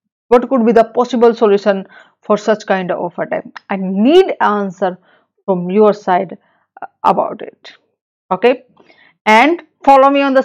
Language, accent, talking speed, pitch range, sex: English, Indian, 145 wpm, 200-245 Hz, female